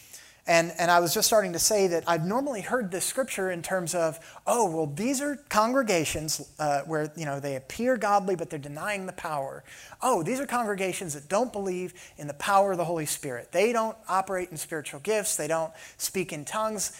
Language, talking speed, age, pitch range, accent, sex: English, 210 wpm, 30-49, 150-210 Hz, American, male